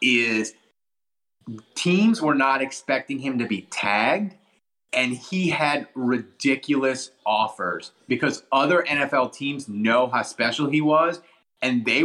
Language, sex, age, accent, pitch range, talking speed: English, male, 30-49, American, 120-160 Hz, 125 wpm